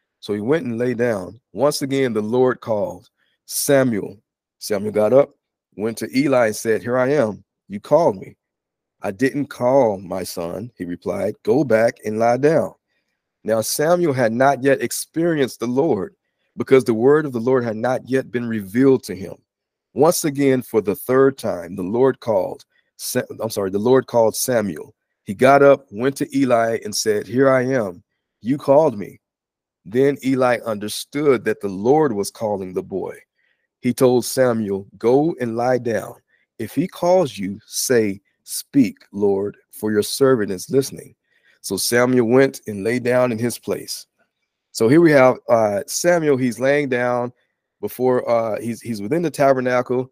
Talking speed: 170 wpm